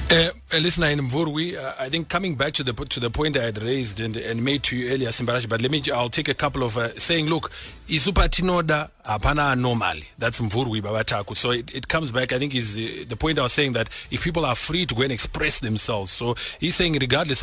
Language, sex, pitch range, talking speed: English, male, 110-140 Hz, 240 wpm